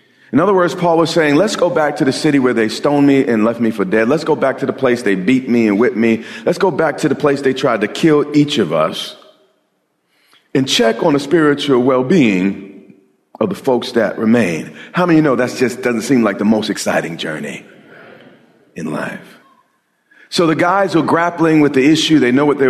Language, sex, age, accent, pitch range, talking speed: English, male, 40-59, American, 120-155 Hz, 225 wpm